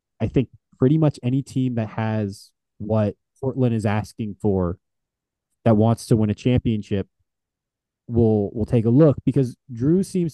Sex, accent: male, American